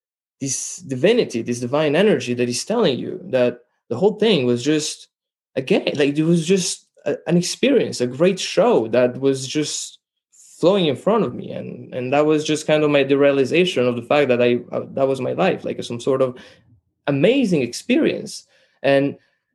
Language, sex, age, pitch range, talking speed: English, male, 20-39, 125-170 Hz, 185 wpm